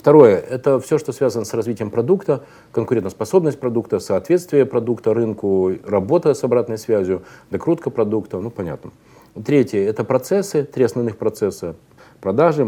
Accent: native